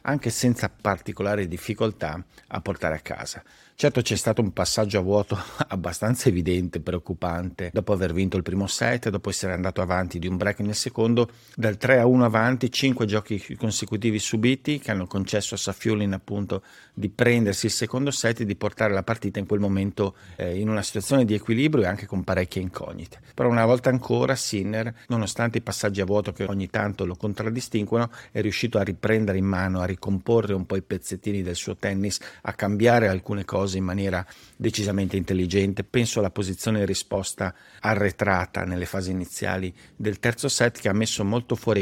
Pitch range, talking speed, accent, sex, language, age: 95-115 Hz, 180 wpm, native, male, Italian, 50-69